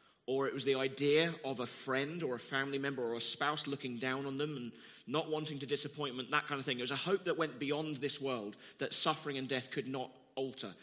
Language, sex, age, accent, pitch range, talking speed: English, male, 30-49, British, 130-155 Hz, 245 wpm